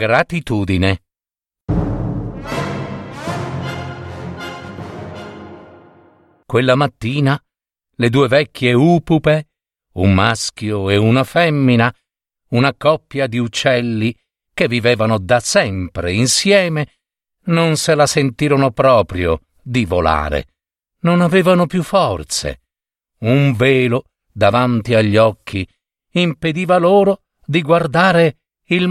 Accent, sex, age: native, male, 50-69